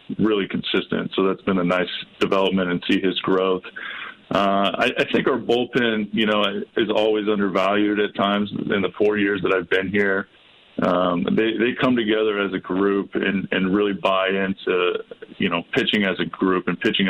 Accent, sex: American, male